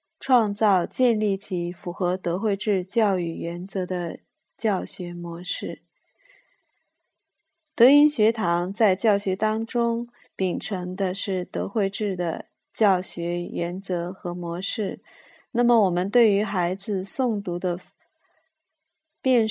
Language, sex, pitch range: Chinese, female, 180-220 Hz